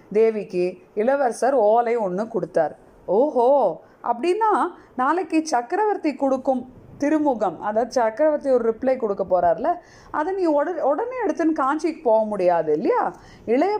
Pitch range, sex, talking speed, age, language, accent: 210-285 Hz, female, 115 wpm, 30-49, Tamil, native